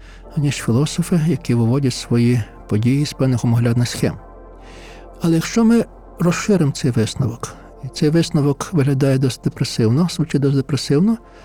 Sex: male